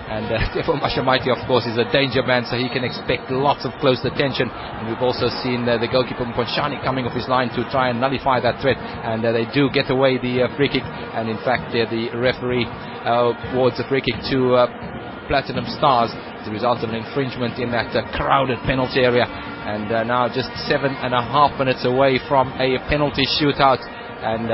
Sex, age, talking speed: male, 30-49, 215 wpm